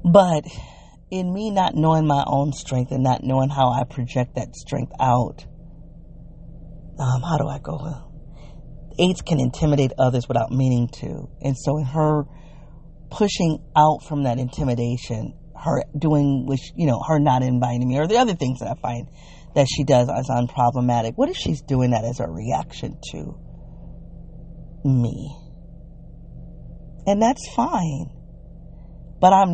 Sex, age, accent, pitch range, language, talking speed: female, 40-59, American, 130-160 Hz, English, 150 wpm